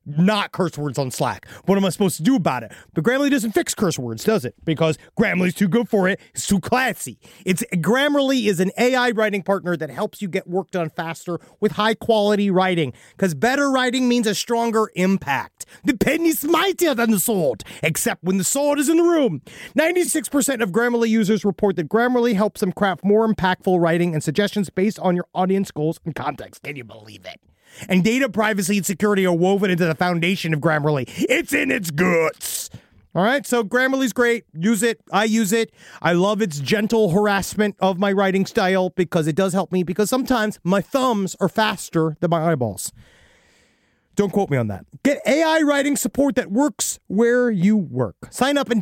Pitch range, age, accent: 175-235 Hz, 30-49, American